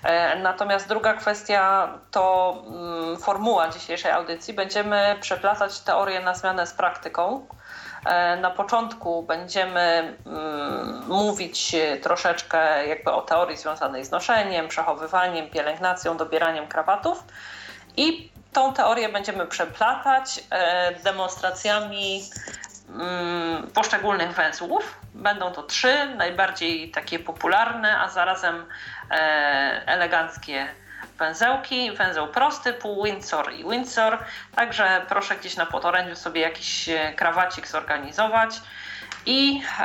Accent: native